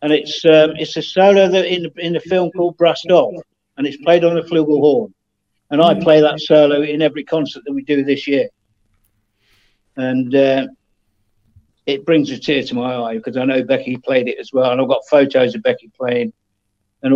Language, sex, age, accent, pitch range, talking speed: English, male, 50-69, British, 125-155 Hz, 205 wpm